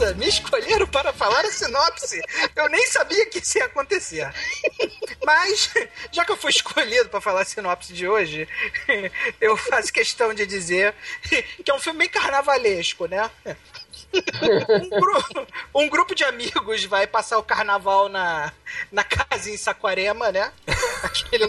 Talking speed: 150 wpm